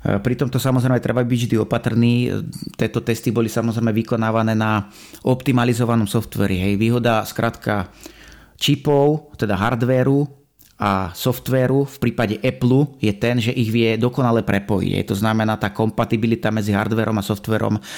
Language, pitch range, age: Slovak, 110-125 Hz, 30-49